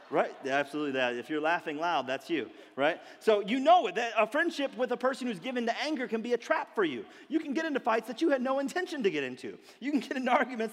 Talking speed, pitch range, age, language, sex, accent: 265 wpm, 225-295 Hz, 40-59, English, male, American